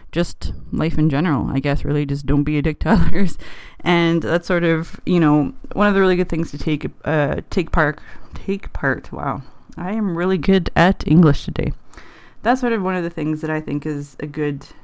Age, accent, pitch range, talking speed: 20-39, American, 140-170 Hz, 215 wpm